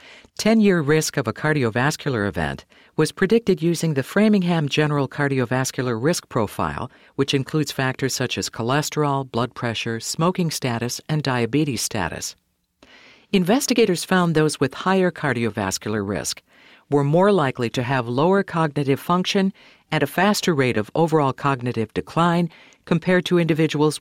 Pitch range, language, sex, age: 120-175 Hz, English, female, 50-69